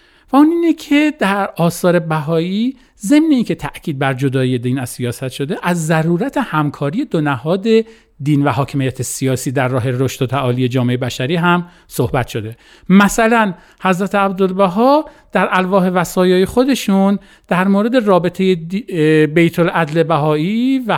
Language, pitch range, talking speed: Persian, 145-205 Hz, 135 wpm